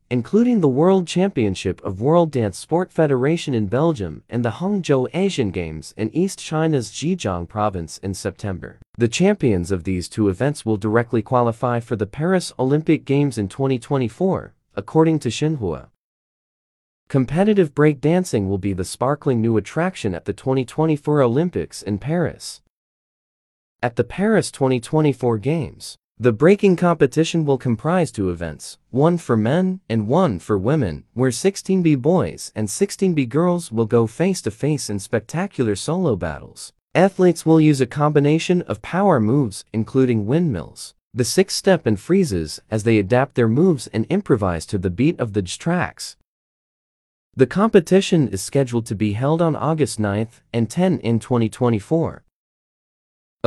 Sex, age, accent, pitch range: male, 30-49, American, 110-165 Hz